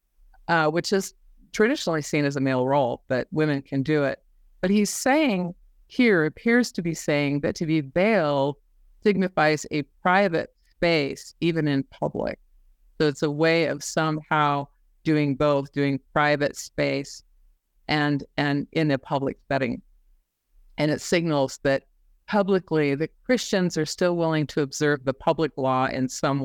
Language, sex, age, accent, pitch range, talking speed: English, female, 50-69, American, 135-175 Hz, 150 wpm